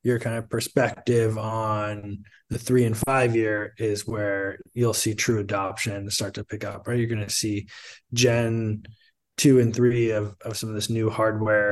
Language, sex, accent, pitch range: English, male, American, 105-115 Hz